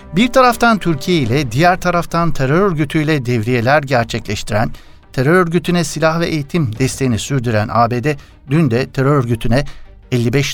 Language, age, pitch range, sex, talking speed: Turkish, 60-79, 125-165 Hz, male, 130 wpm